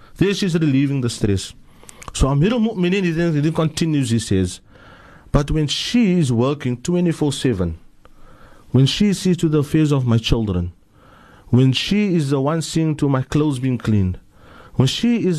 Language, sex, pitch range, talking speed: English, male, 115-180 Hz, 155 wpm